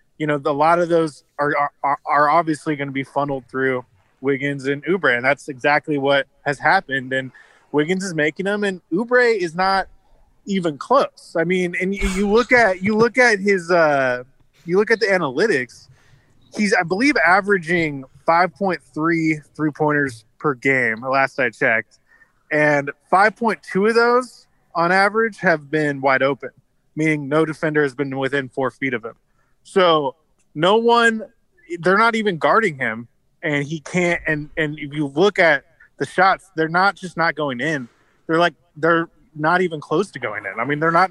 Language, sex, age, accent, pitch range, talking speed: English, male, 20-39, American, 140-185 Hz, 180 wpm